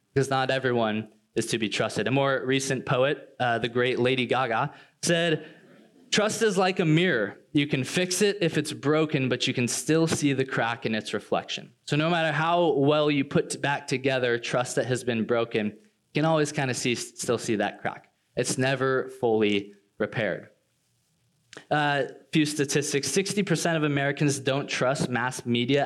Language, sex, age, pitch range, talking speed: English, male, 20-39, 120-150 Hz, 180 wpm